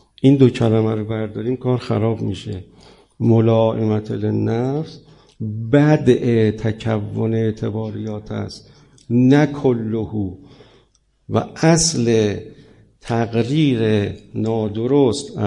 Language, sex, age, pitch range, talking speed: Persian, male, 50-69, 110-140 Hz, 80 wpm